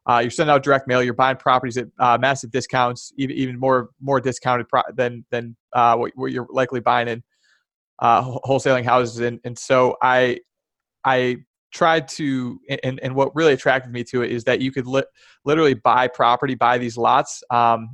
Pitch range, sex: 120-130 Hz, male